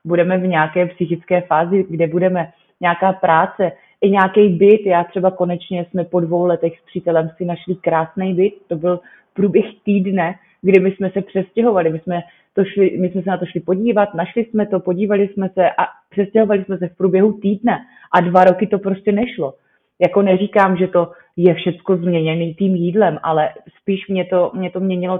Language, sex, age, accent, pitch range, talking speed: Czech, female, 30-49, native, 175-200 Hz, 190 wpm